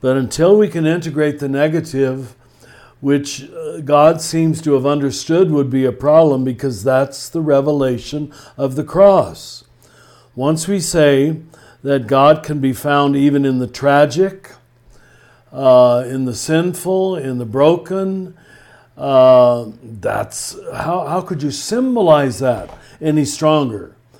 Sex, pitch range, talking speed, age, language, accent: male, 130-150 Hz, 130 wpm, 60-79, English, American